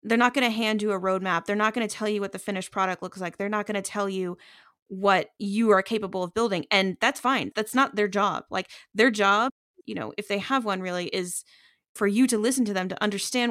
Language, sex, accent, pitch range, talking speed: English, female, American, 195-235 Hz, 260 wpm